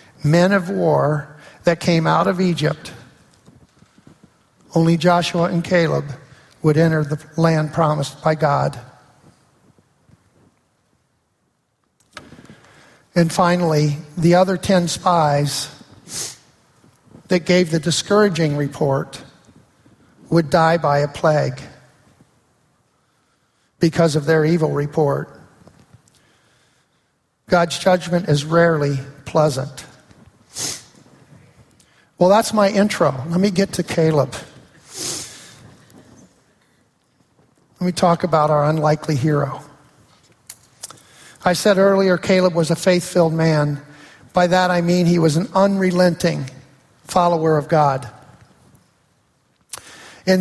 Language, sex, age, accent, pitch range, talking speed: English, male, 50-69, American, 150-180 Hz, 100 wpm